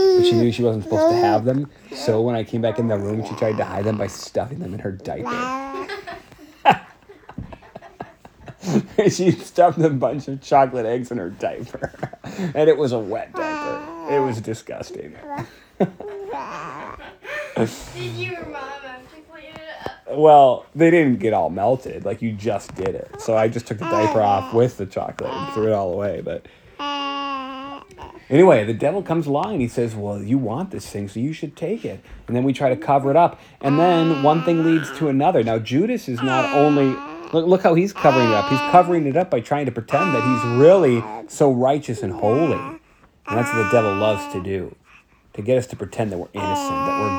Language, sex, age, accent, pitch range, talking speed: English, male, 30-49, American, 110-170 Hz, 200 wpm